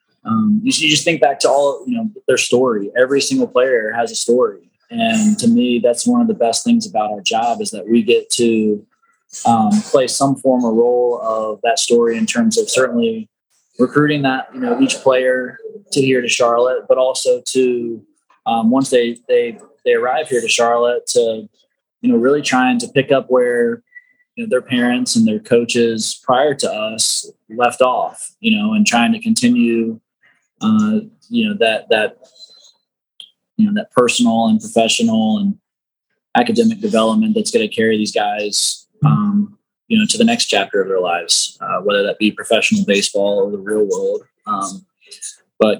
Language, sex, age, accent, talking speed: English, male, 20-39, American, 180 wpm